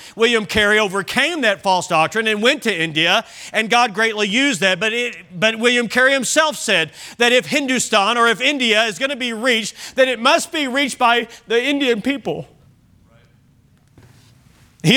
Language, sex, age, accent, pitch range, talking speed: English, male, 40-59, American, 215-260 Hz, 170 wpm